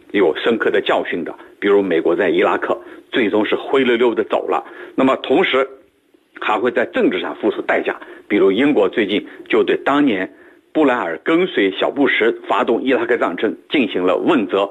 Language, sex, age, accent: Chinese, male, 50-69, native